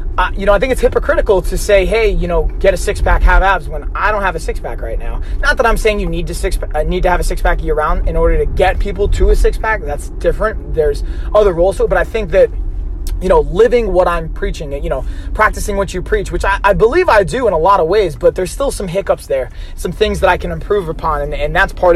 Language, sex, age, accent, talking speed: English, male, 30-49, American, 275 wpm